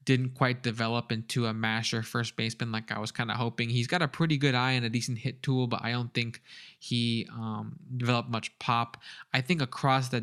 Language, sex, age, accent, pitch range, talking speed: English, male, 20-39, American, 115-130 Hz, 225 wpm